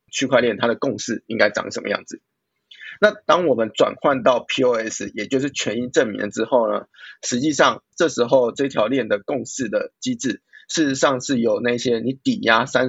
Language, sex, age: Chinese, male, 20-39